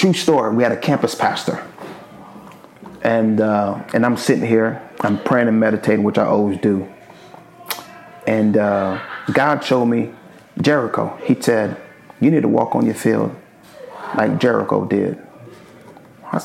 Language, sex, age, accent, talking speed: English, male, 30-49, American, 145 wpm